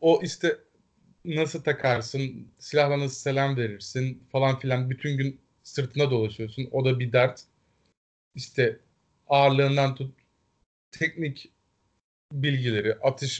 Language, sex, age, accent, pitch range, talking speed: Turkish, male, 30-49, native, 125-145 Hz, 110 wpm